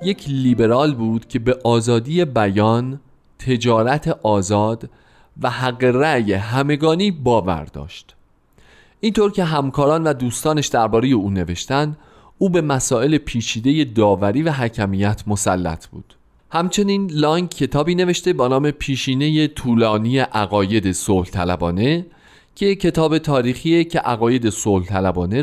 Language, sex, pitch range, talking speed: Persian, male, 105-155 Hz, 115 wpm